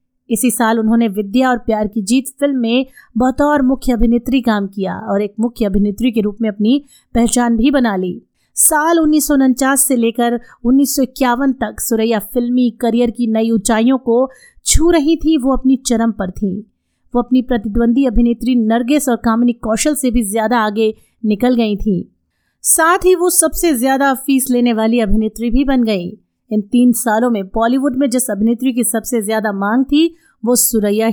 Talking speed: 175 wpm